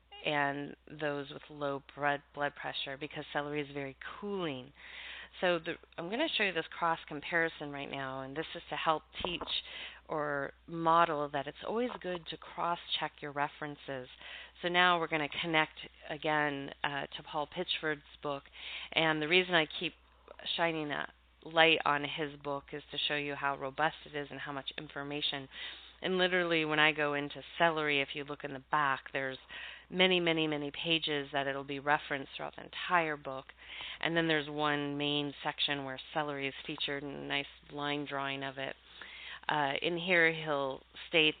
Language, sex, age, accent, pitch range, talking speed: English, female, 30-49, American, 140-160 Hz, 175 wpm